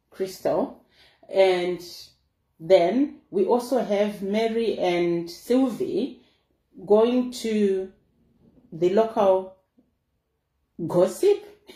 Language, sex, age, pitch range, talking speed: English, female, 30-49, 175-235 Hz, 70 wpm